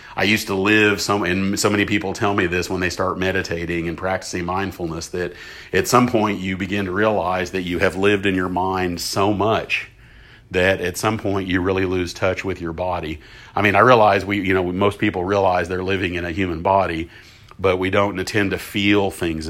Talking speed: 210 wpm